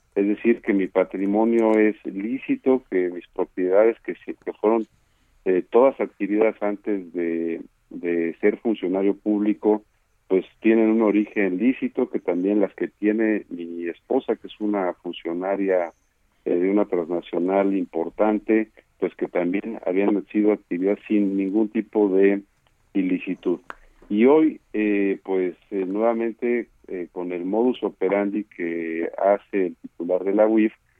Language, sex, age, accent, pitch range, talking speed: Spanish, male, 50-69, Mexican, 90-110 Hz, 135 wpm